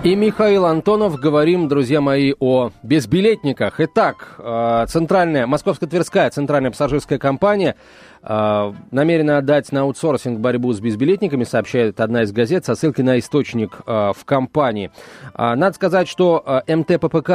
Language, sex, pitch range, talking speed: Russian, male, 120-170 Hz, 120 wpm